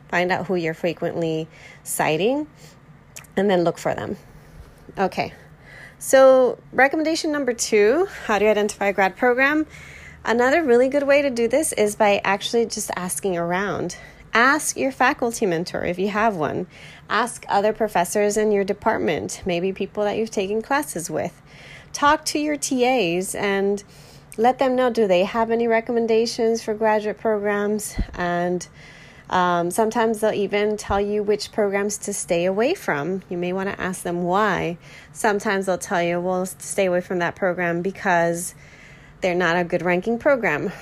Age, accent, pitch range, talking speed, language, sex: 30-49, American, 175-230 Hz, 160 wpm, English, female